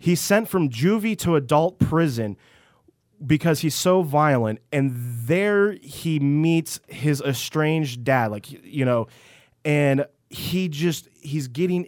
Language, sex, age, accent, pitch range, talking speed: English, male, 30-49, American, 130-160 Hz, 130 wpm